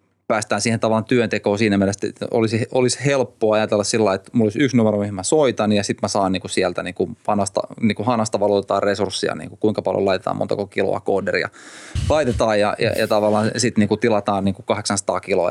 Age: 20-39